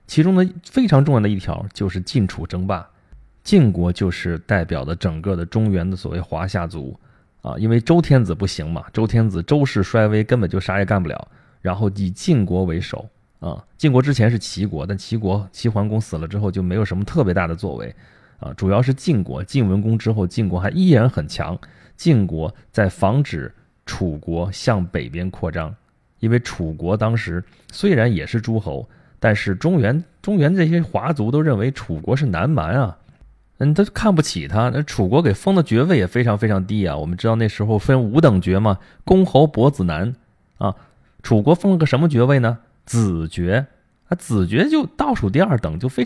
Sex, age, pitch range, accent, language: male, 20-39, 95-130 Hz, native, Chinese